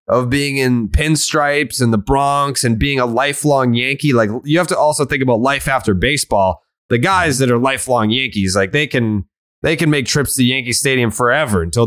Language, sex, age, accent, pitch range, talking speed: English, male, 20-39, American, 110-150 Hz, 200 wpm